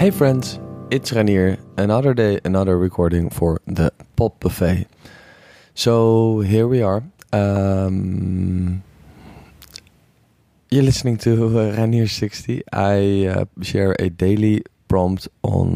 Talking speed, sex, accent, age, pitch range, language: 115 wpm, male, Dutch, 20-39, 95-115 Hz, English